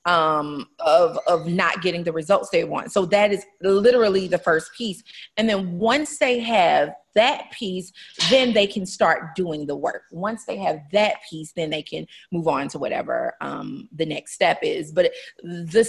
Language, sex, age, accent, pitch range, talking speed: English, female, 30-49, American, 175-230 Hz, 185 wpm